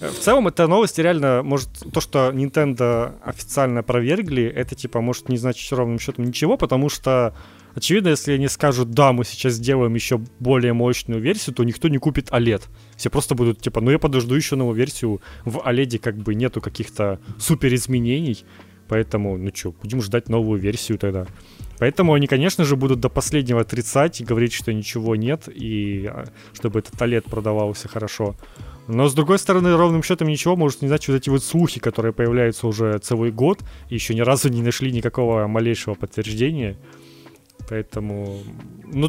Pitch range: 110-135 Hz